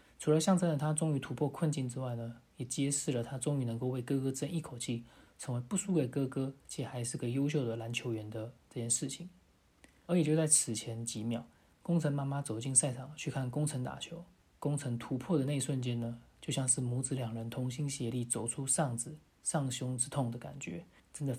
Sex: male